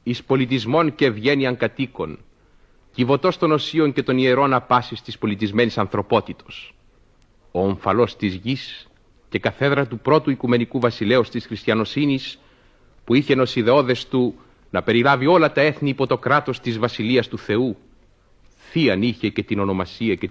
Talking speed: 145 wpm